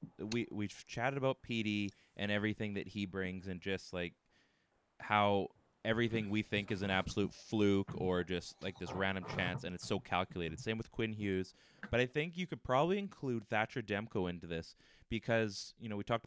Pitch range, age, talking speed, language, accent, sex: 90-110 Hz, 20-39, 190 wpm, English, American, male